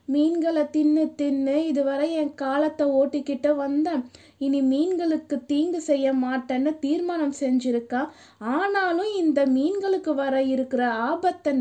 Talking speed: 110 wpm